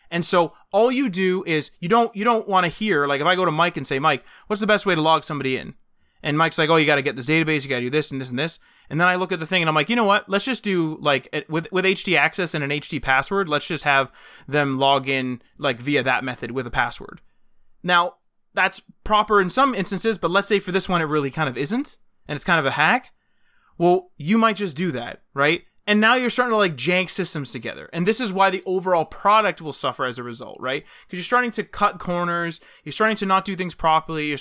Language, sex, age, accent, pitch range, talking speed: English, male, 20-39, American, 145-190 Hz, 265 wpm